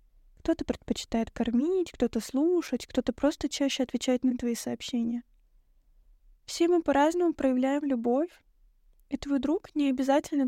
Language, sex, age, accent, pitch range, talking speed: Russian, female, 10-29, native, 245-280 Hz, 125 wpm